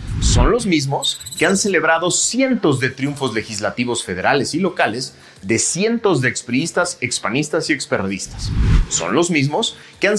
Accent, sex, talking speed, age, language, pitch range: Mexican, male, 145 wpm, 30-49, Spanish, 120-195 Hz